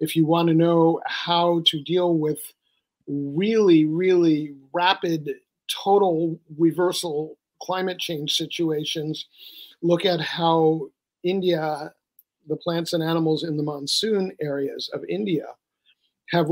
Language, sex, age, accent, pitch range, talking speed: English, male, 50-69, American, 150-175 Hz, 115 wpm